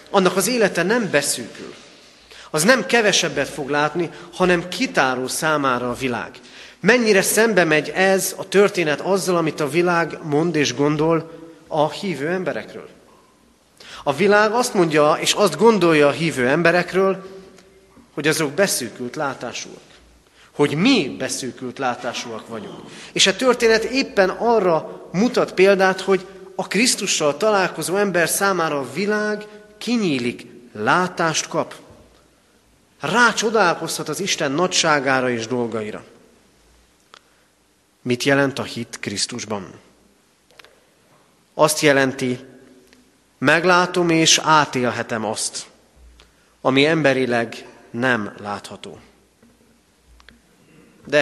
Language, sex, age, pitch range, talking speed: Hungarian, male, 30-49, 130-190 Hz, 105 wpm